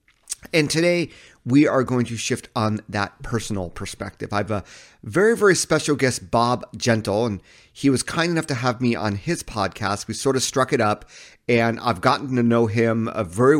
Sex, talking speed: male, 195 wpm